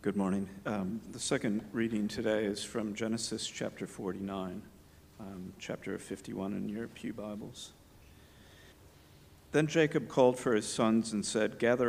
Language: English